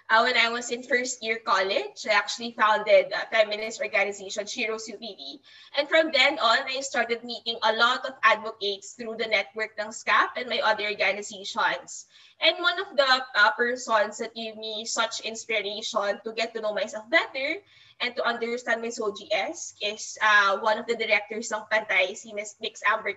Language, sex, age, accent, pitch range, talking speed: Filipino, female, 20-39, native, 215-265 Hz, 180 wpm